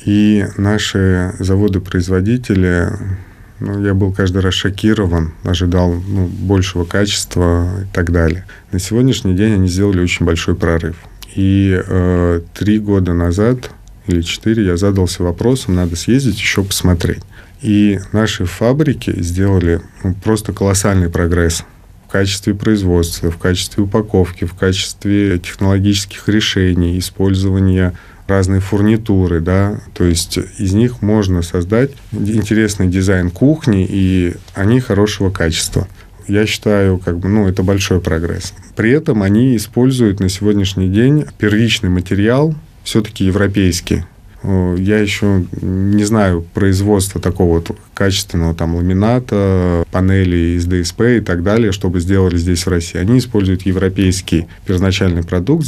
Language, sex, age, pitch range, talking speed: Russian, male, 20-39, 90-105 Hz, 125 wpm